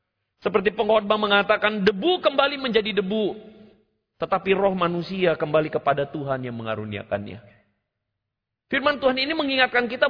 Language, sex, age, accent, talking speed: Indonesian, male, 40-59, native, 120 wpm